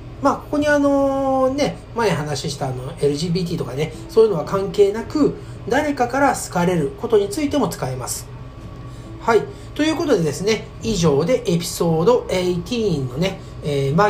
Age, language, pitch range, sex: 40-59, Japanese, 135-195 Hz, male